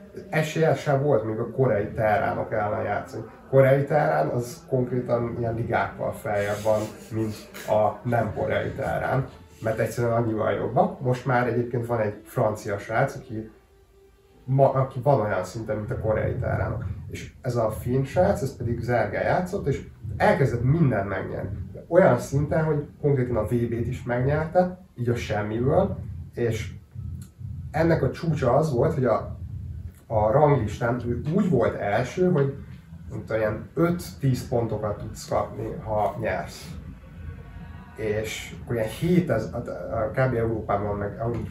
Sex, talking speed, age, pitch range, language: male, 135 wpm, 30-49, 105-135 Hz, Hungarian